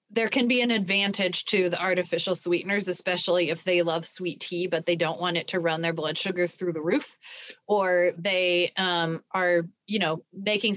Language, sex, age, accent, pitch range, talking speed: English, female, 20-39, American, 180-235 Hz, 195 wpm